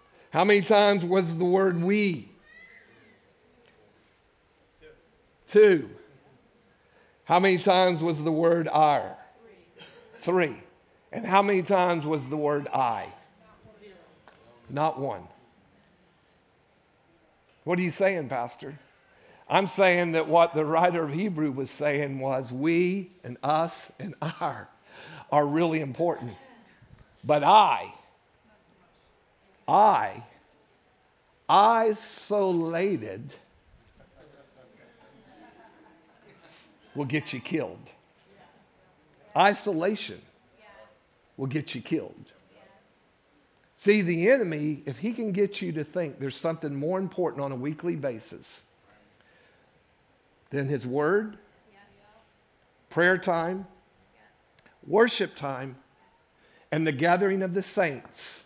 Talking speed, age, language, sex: 95 wpm, 50-69, English, male